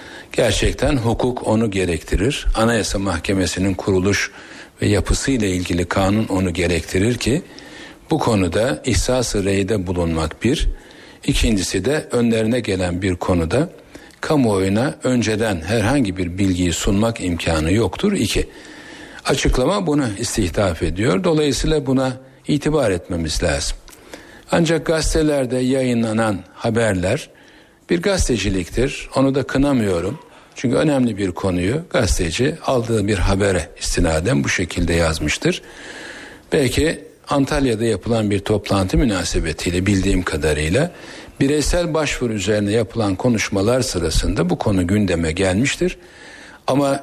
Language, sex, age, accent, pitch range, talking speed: Turkish, male, 60-79, native, 95-130 Hz, 105 wpm